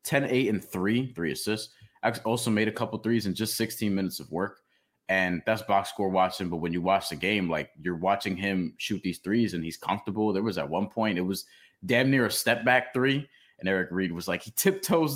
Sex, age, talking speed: male, 20-39, 230 wpm